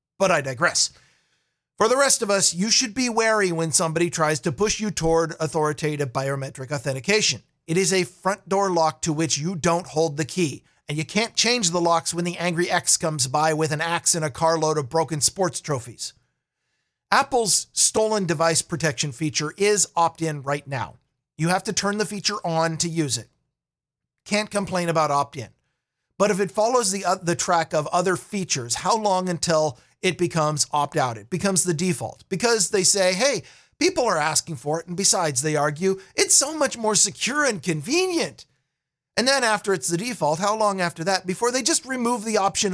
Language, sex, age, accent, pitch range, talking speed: English, male, 50-69, American, 155-205 Hz, 195 wpm